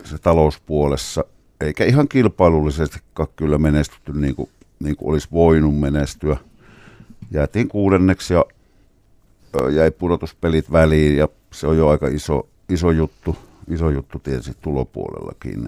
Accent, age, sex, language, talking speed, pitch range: native, 50-69, male, Finnish, 110 wpm, 75-90 Hz